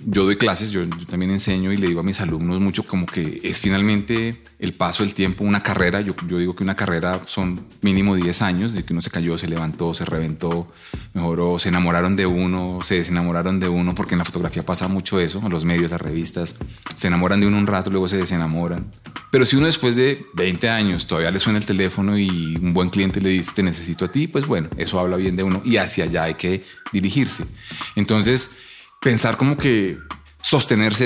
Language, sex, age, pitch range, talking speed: Spanish, male, 30-49, 85-105 Hz, 220 wpm